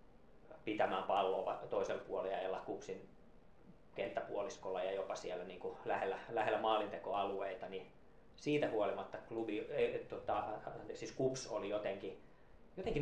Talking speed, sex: 115 wpm, male